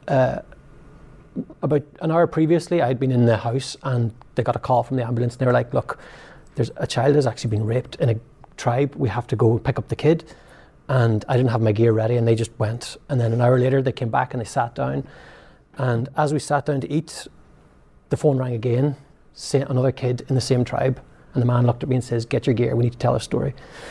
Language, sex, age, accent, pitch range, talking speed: English, male, 30-49, Irish, 120-145 Hz, 250 wpm